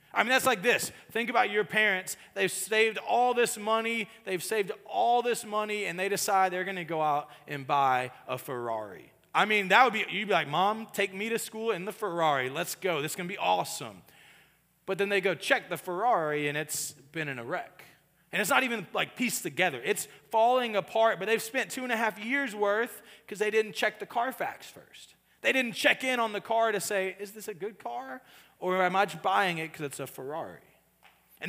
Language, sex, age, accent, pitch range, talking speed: English, male, 30-49, American, 165-220 Hz, 225 wpm